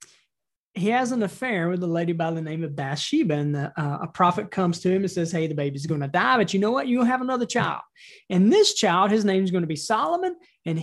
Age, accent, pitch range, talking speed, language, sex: 30-49, American, 170-235 Hz, 260 wpm, English, male